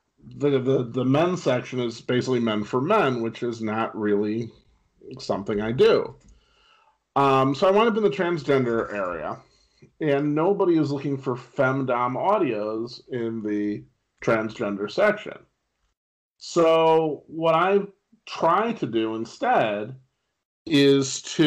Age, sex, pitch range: 40-59, male, 115-155 Hz